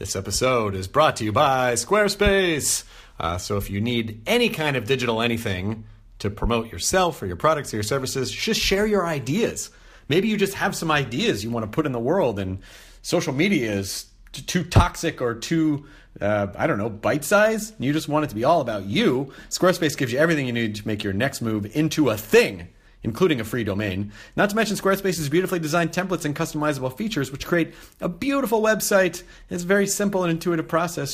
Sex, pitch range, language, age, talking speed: male, 110-170 Hz, English, 30-49, 205 wpm